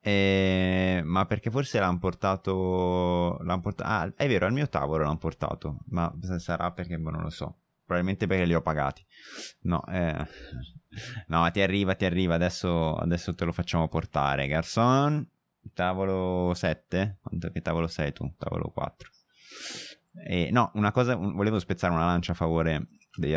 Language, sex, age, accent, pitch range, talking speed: Italian, male, 20-39, native, 80-95 Hz, 155 wpm